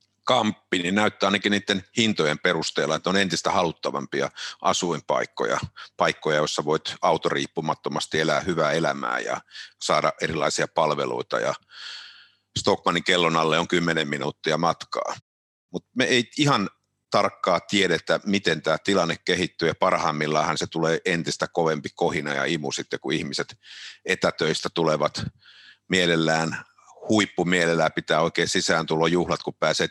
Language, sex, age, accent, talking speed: Finnish, male, 50-69, native, 125 wpm